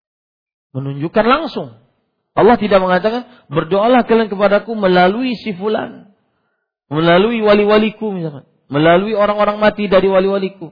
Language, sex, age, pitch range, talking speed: Malay, male, 50-69, 140-200 Hz, 105 wpm